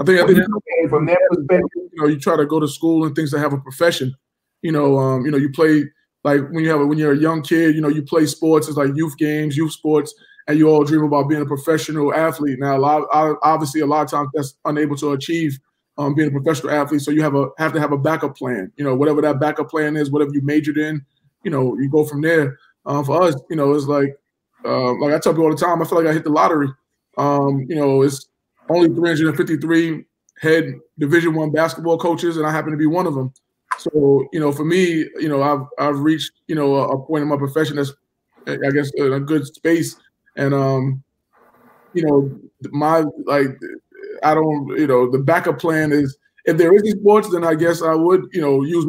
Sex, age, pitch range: male, 20-39, 140-160 Hz